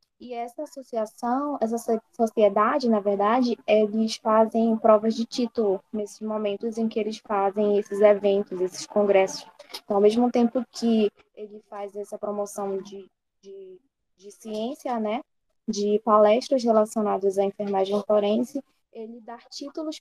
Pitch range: 210-245 Hz